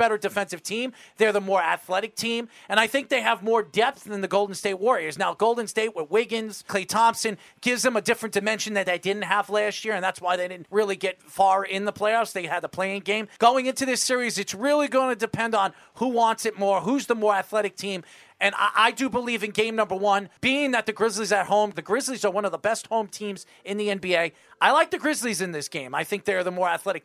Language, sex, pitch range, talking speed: English, male, 195-245 Hz, 250 wpm